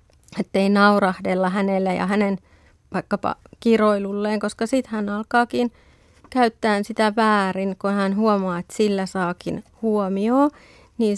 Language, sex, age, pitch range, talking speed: Finnish, female, 30-49, 200-230 Hz, 125 wpm